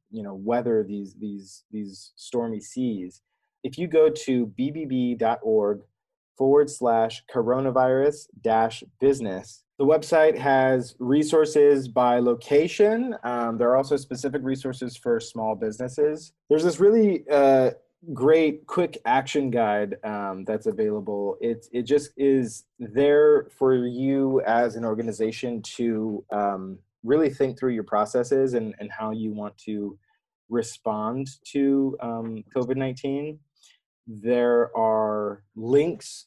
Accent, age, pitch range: American, 20-39, 110-140 Hz